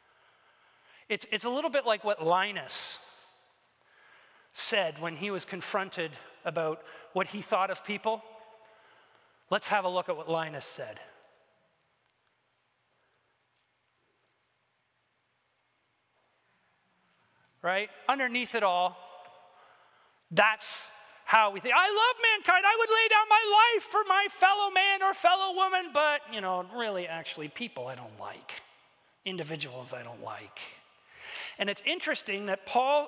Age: 30-49